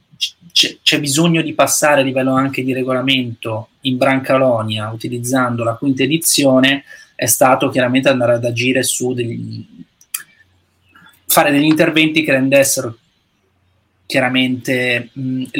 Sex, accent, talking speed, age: male, native, 115 wpm, 20-39